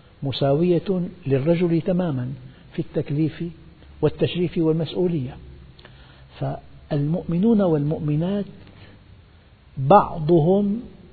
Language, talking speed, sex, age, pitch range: Arabic, 55 wpm, male, 60-79, 130-175 Hz